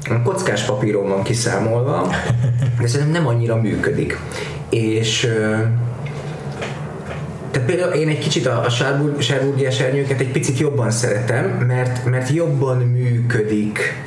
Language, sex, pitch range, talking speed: Hungarian, male, 120-140 Hz, 120 wpm